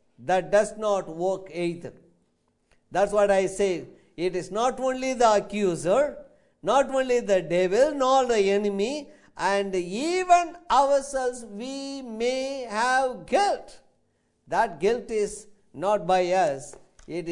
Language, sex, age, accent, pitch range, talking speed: English, male, 50-69, Indian, 185-275 Hz, 125 wpm